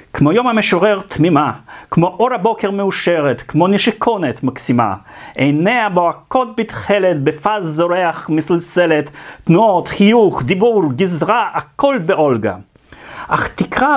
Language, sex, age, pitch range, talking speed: Hebrew, male, 40-59, 150-210 Hz, 105 wpm